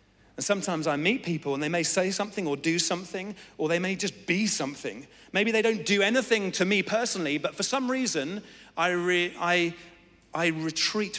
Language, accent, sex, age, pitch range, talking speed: English, British, male, 40-59, 140-210 Hz, 175 wpm